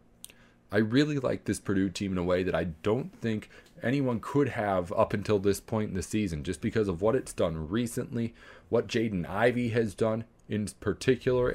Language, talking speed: English, 190 wpm